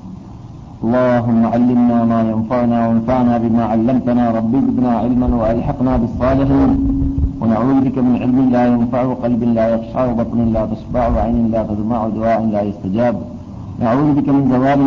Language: Malayalam